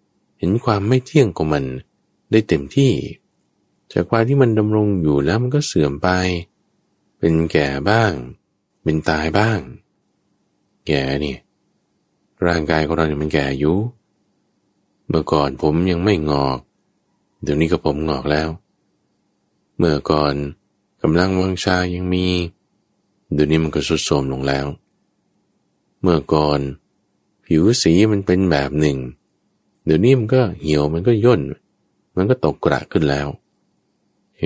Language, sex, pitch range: Thai, male, 75-100 Hz